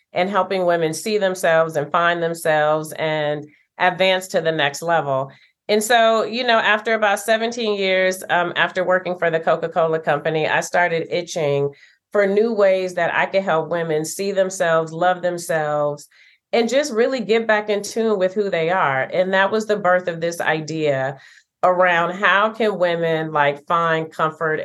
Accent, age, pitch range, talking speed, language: American, 30-49, 155-195 Hz, 170 wpm, English